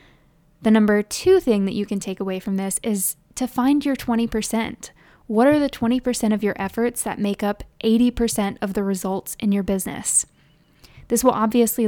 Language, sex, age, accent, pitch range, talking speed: English, female, 10-29, American, 200-240 Hz, 180 wpm